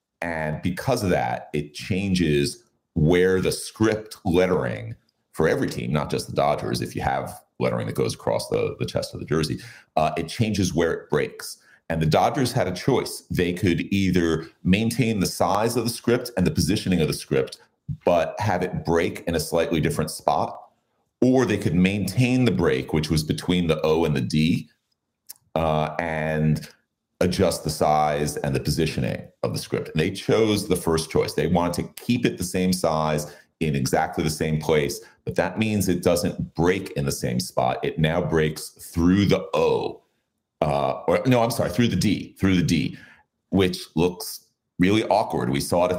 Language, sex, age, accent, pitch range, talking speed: English, male, 40-59, American, 80-95 Hz, 190 wpm